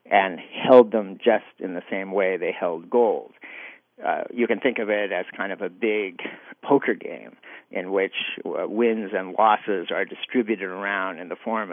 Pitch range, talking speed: 105-130 Hz, 185 wpm